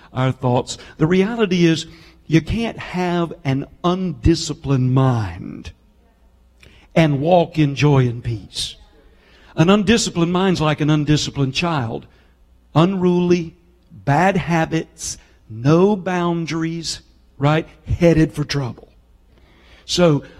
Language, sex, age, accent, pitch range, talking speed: English, male, 60-79, American, 140-180 Hz, 100 wpm